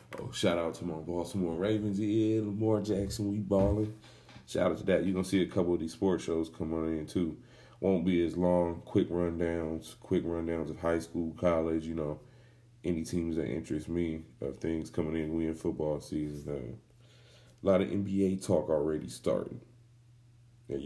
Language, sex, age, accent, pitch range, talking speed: English, male, 30-49, American, 85-115 Hz, 185 wpm